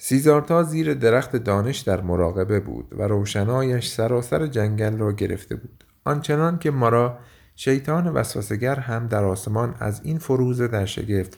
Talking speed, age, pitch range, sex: 150 wpm, 50-69, 105-135 Hz, male